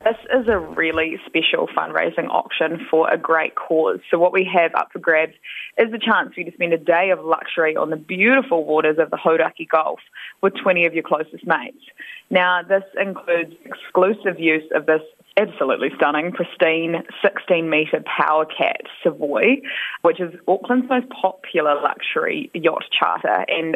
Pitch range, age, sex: 165-210 Hz, 20-39, female